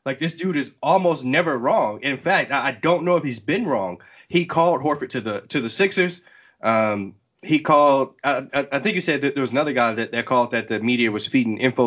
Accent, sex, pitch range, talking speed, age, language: American, male, 120-155 Hz, 235 wpm, 20-39, English